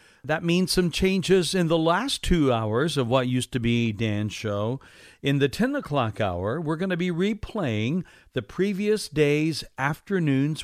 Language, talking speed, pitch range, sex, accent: English, 170 wpm, 120-175 Hz, male, American